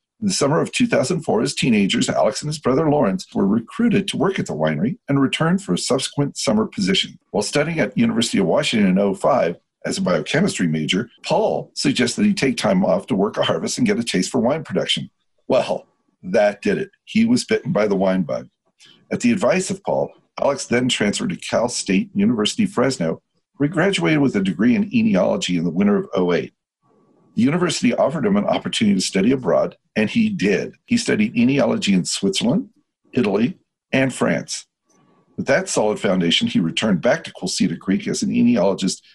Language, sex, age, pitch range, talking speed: English, male, 50-69, 135-220 Hz, 195 wpm